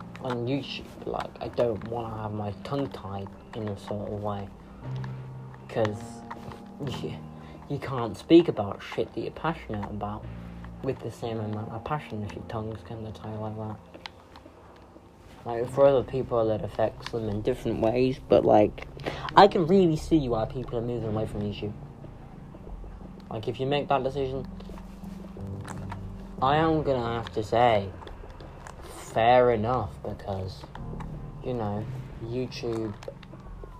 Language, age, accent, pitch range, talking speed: English, 20-39, British, 100-125 Hz, 145 wpm